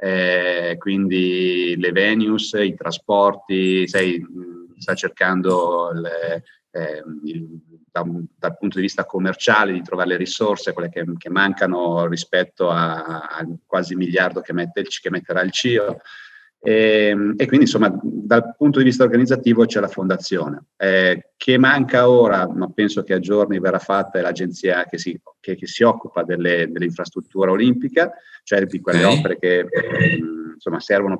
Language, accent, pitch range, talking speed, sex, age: Italian, native, 90-105 Hz, 140 wpm, male, 40-59